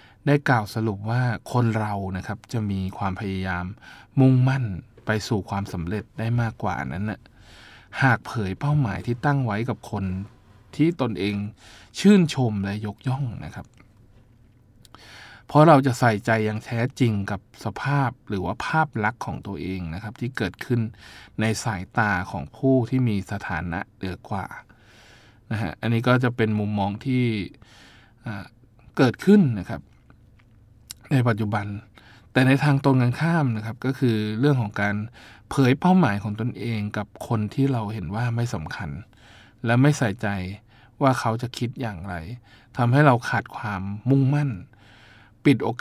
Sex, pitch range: male, 100-125 Hz